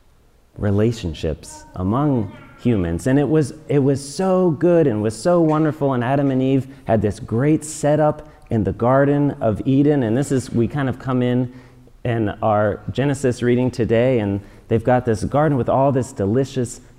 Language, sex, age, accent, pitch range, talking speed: English, male, 30-49, American, 105-145 Hz, 175 wpm